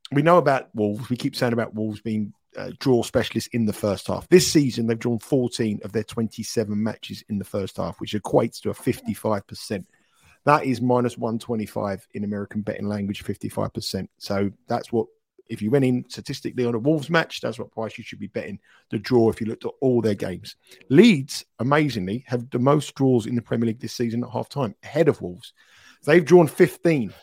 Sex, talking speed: male, 205 wpm